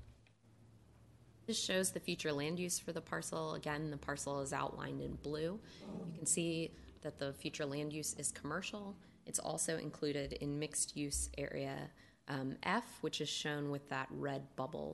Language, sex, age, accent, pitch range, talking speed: English, female, 20-39, American, 140-170 Hz, 165 wpm